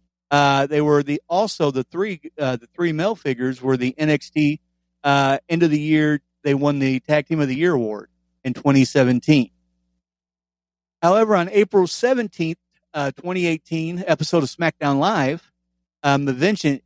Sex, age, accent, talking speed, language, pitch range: male, 40-59, American, 155 wpm, English, 125-165 Hz